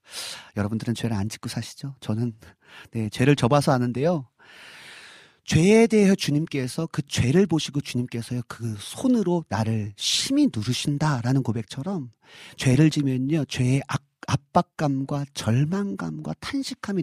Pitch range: 130-210 Hz